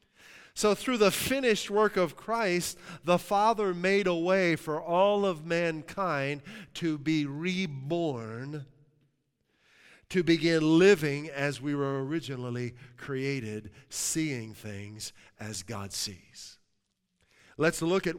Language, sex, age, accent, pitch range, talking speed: English, male, 50-69, American, 125-165 Hz, 115 wpm